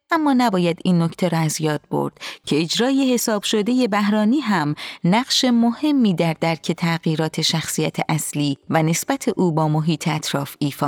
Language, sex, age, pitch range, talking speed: Persian, female, 30-49, 165-230 Hz, 155 wpm